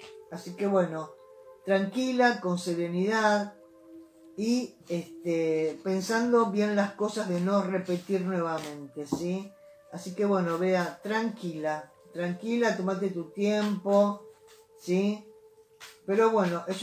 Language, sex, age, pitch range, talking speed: Spanish, female, 20-39, 175-230 Hz, 105 wpm